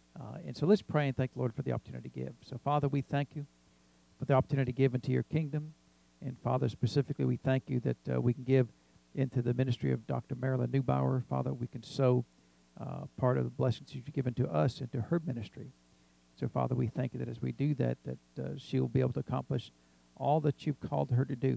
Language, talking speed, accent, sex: English, 240 wpm, American, male